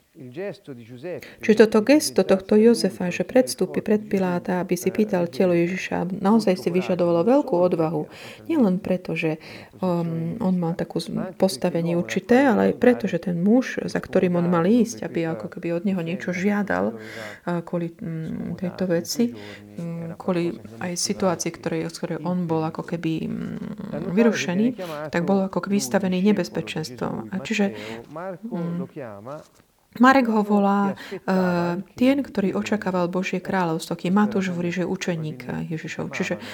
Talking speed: 135 wpm